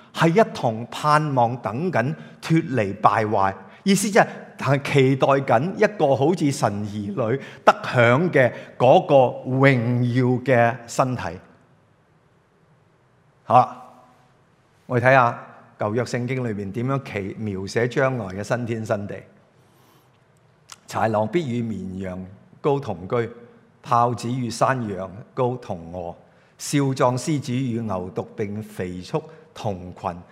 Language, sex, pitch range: English, male, 105-145 Hz